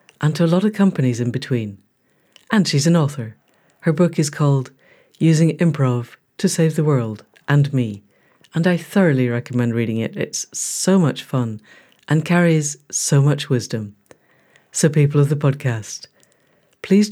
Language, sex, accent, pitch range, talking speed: English, female, British, 130-185 Hz, 160 wpm